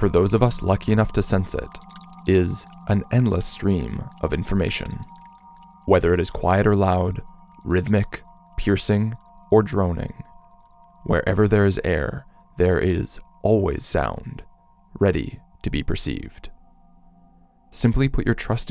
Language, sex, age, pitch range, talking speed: English, male, 20-39, 90-125 Hz, 130 wpm